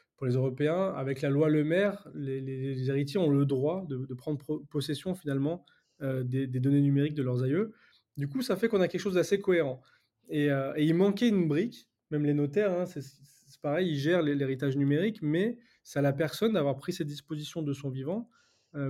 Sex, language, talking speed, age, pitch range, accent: male, French, 220 wpm, 20-39, 140-175 Hz, French